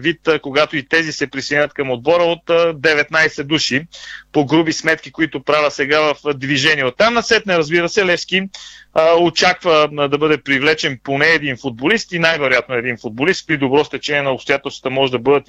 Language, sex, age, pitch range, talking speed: Bulgarian, male, 40-59, 145-165 Hz, 180 wpm